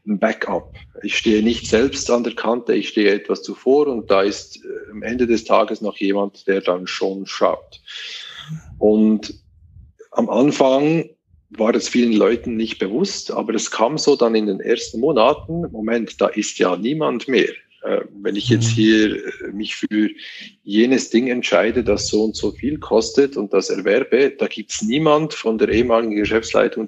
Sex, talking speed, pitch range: male, 170 wpm, 105-145 Hz